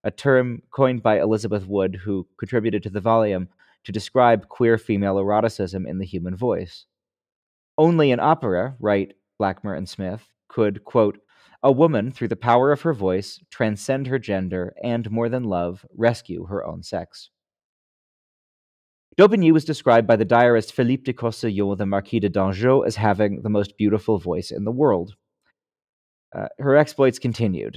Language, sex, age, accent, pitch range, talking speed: English, male, 30-49, American, 100-120 Hz, 160 wpm